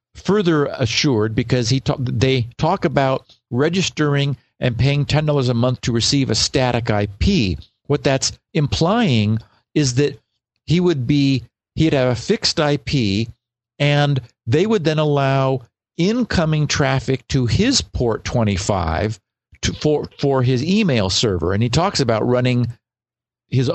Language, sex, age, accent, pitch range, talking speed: English, male, 50-69, American, 115-140 Hz, 140 wpm